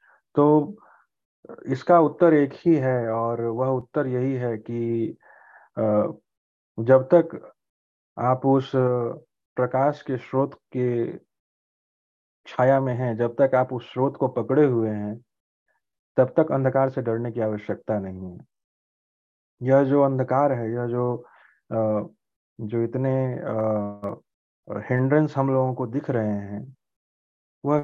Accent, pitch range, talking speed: native, 115-145 Hz, 125 wpm